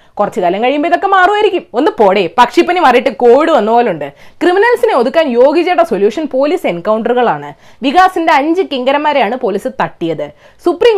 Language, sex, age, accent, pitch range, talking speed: Malayalam, female, 20-39, native, 245-355 Hz, 125 wpm